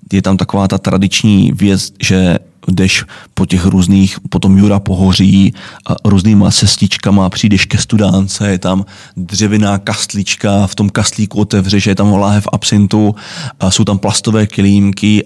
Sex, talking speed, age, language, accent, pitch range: male, 155 wpm, 20-39, Czech, native, 95-105 Hz